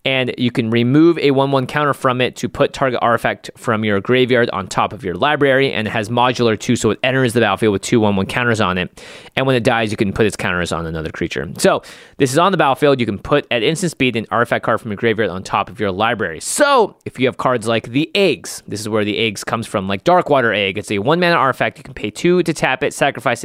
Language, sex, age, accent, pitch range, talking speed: English, male, 20-39, American, 110-140 Hz, 260 wpm